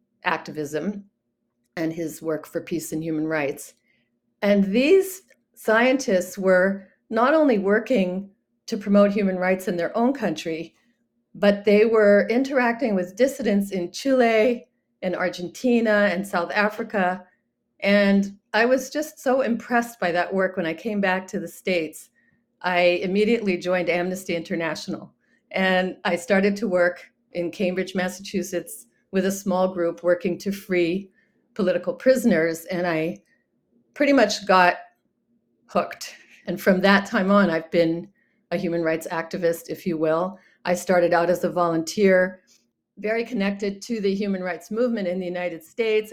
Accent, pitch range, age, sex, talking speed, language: American, 175-215 Hz, 40-59, female, 145 wpm, English